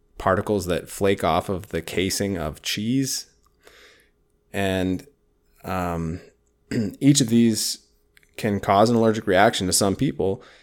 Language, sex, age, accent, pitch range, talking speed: English, male, 20-39, American, 85-105 Hz, 125 wpm